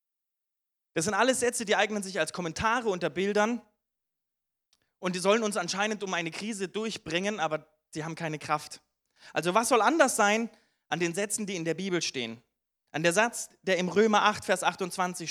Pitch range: 150-205 Hz